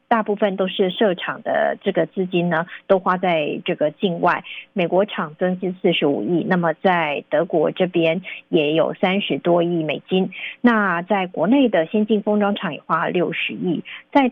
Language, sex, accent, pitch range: Chinese, female, native, 175-220 Hz